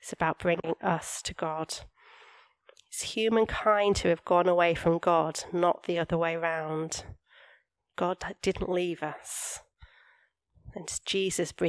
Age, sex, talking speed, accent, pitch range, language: 30-49, female, 130 wpm, British, 165-200 Hz, English